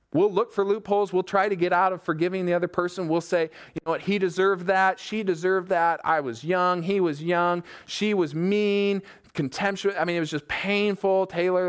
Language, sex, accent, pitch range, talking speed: English, male, American, 140-185 Hz, 215 wpm